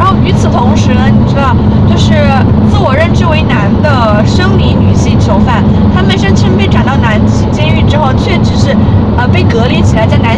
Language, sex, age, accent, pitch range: Chinese, female, 20-39, native, 100-110 Hz